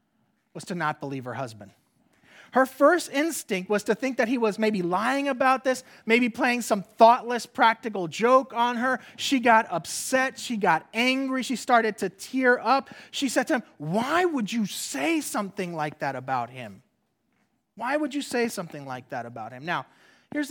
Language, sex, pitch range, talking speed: English, male, 155-255 Hz, 180 wpm